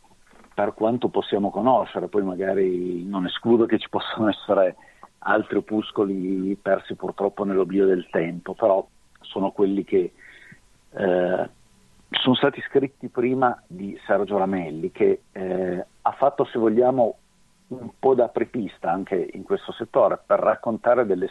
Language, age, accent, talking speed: Italian, 50-69, native, 135 wpm